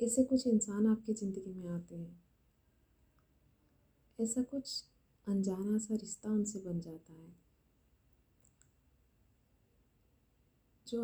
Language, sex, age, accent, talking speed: Hindi, female, 30-49, native, 100 wpm